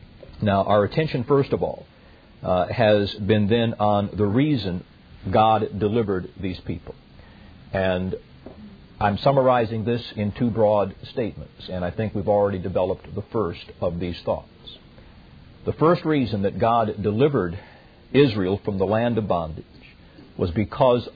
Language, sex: English, male